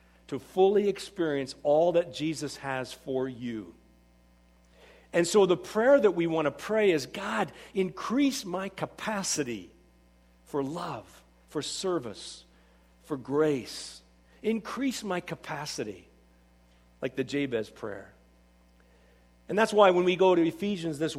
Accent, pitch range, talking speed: American, 125-195 Hz, 125 wpm